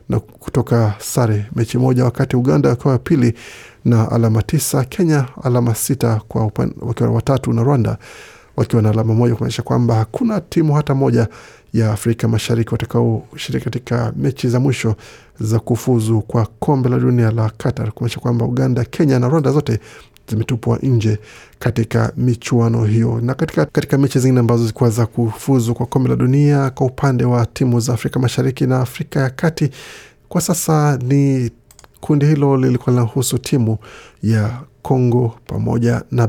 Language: Swahili